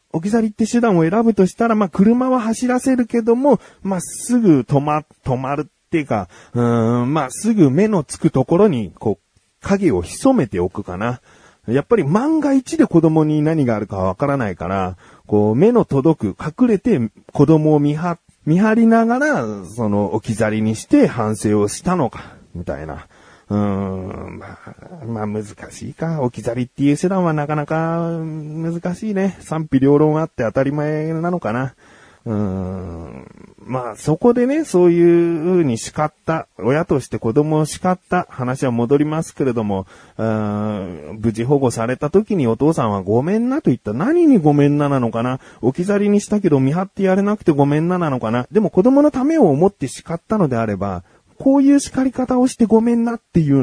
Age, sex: 40-59, male